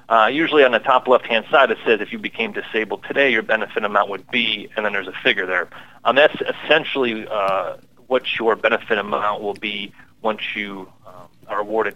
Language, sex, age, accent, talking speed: English, male, 30-49, American, 205 wpm